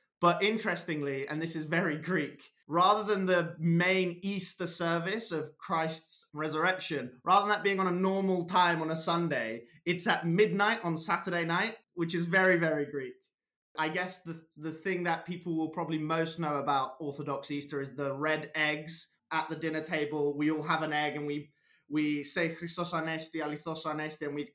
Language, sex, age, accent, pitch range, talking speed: English, male, 20-39, British, 150-175 Hz, 185 wpm